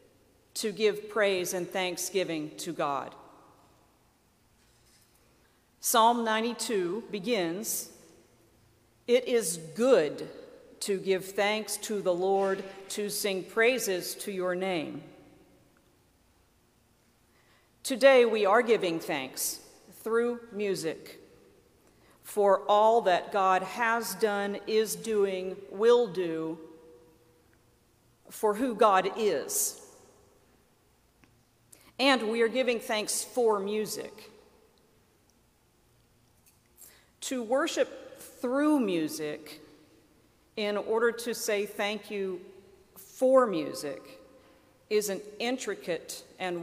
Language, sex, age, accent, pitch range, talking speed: English, female, 50-69, American, 185-235 Hz, 90 wpm